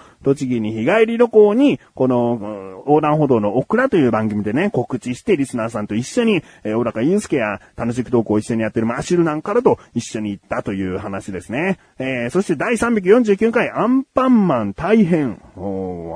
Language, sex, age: Japanese, male, 30-49